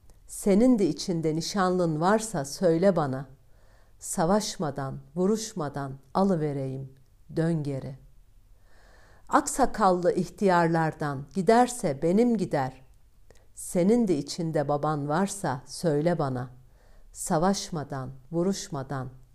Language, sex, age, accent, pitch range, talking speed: Turkish, female, 50-69, native, 110-190 Hz, 80 wpm